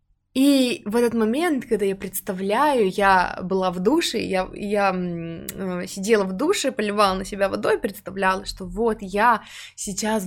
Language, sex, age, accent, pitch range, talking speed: Russian, female, 20-39, native, 180-220 Hz, 145 wpm